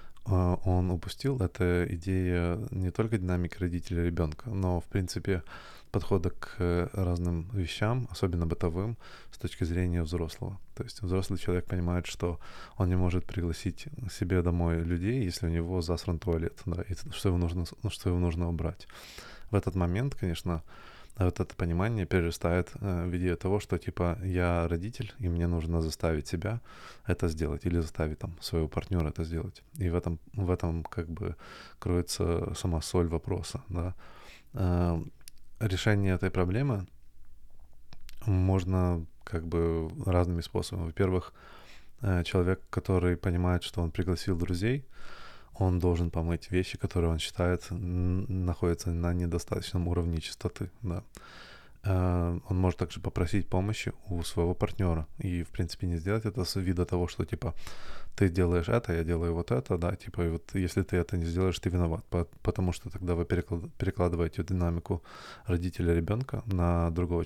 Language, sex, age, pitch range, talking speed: Russian, male, 20-39, 85-95 Hz, 150 wpm